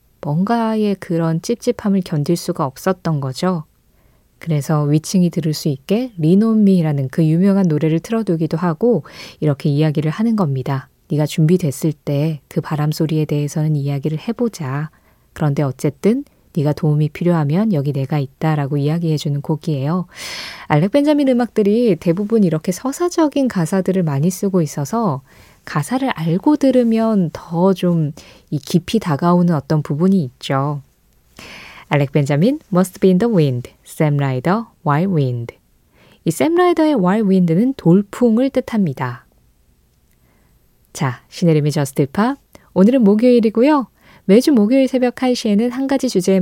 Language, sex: Korean, female